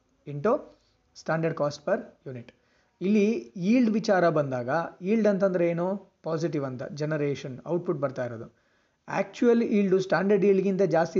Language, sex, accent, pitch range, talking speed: Kannada, male, native, 145-200 Hz, 125 wpm